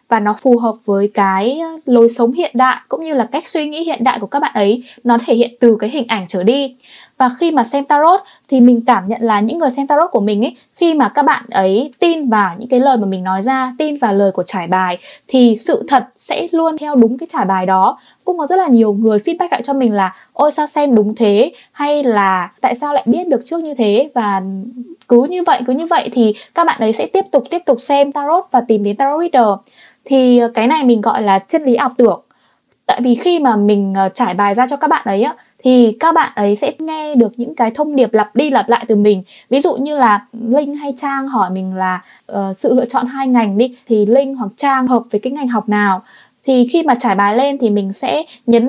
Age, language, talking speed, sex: 10-29, Vietnamese, 250 wpm, female